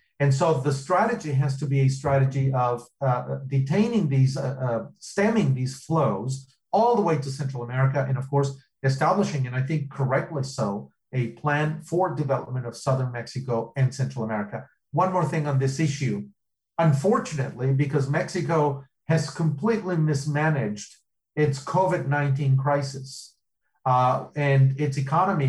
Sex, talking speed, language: male, 145 wpm, English